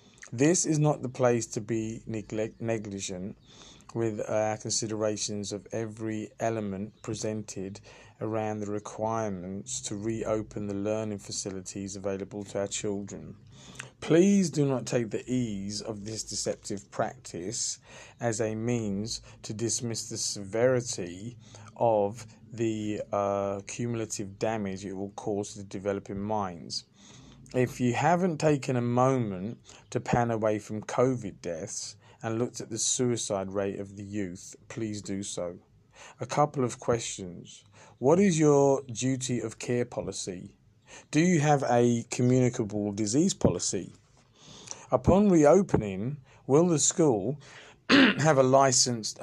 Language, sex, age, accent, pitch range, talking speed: English, male, 20-39, British, 105-125 Hz, 130 wpm